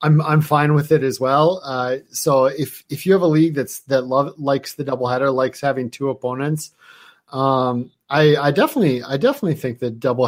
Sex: male